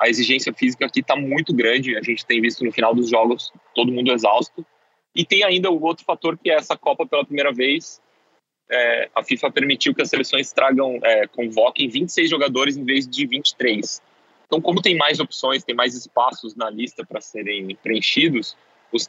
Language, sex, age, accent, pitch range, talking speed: Portuguese, male, 20-39, Brazilian, 125-165 Hz, 190 wpm